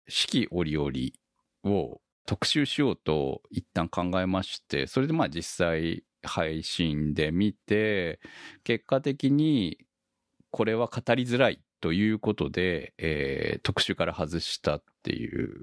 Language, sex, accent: Japanese, male, native